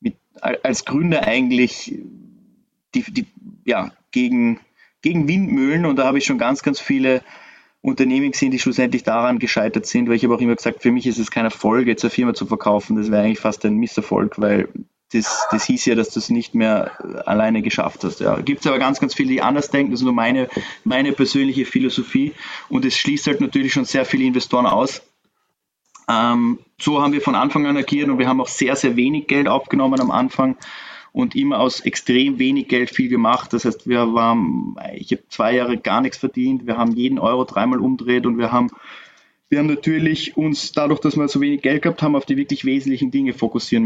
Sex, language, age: male, German, 20-39